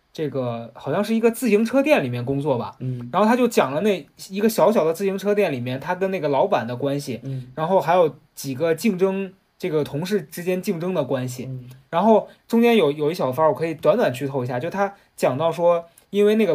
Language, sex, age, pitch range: Chinese, male, 20-39, 135-210 Hz